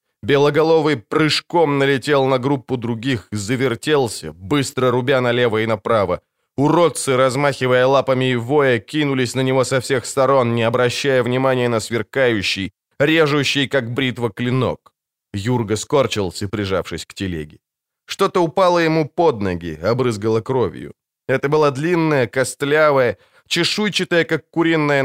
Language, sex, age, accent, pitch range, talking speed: Ukrainian, male, 20-39, native, 115-150 Hz, 120 wpm